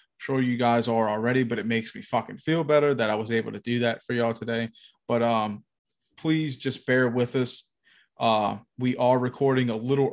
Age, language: 30-49, English